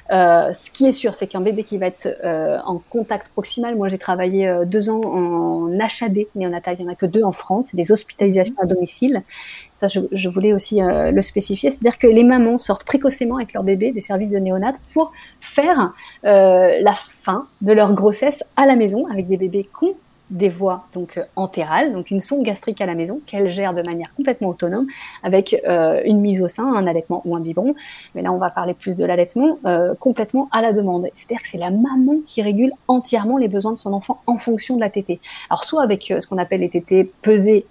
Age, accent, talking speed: 30-49, French, 225 wpm